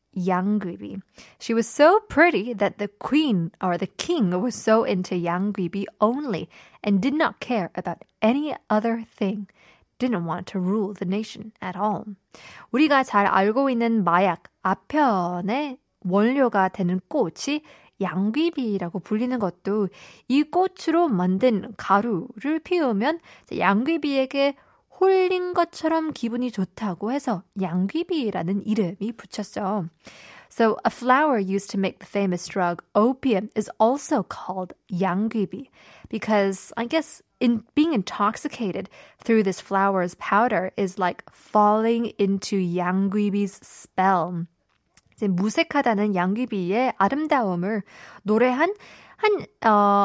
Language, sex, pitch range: Korean, female, 190-255 Hz